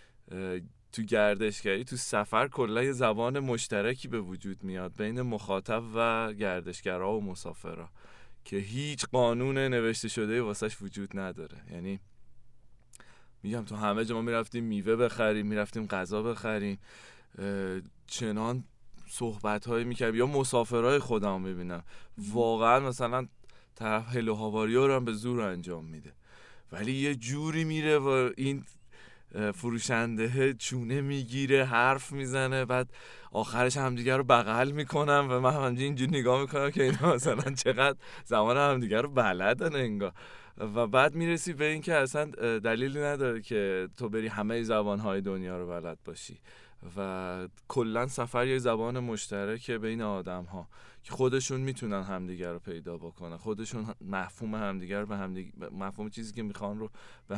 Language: Persian